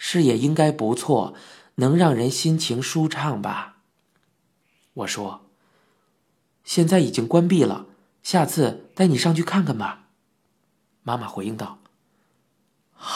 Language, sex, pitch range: Chinese, male, 145-205 Hz